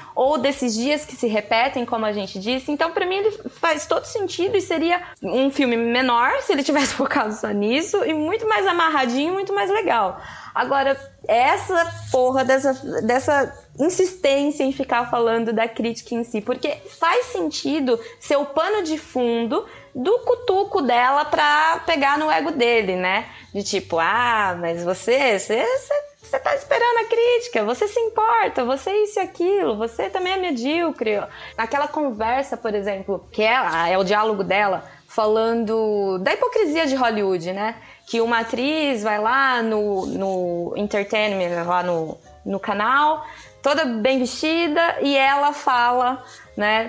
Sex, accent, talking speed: female, Brazilian, 155 wpm